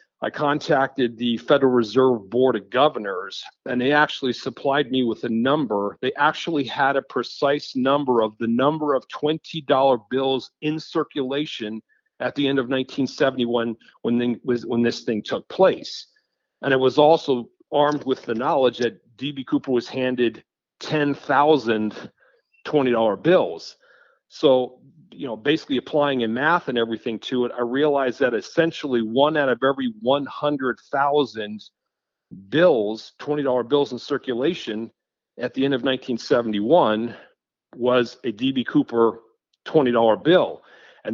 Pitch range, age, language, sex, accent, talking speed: 120-145 Hz, 40-59, English, male, American, 135 wpm